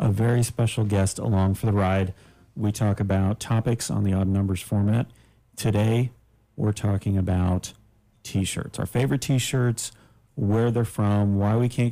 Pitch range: 100-115 Hz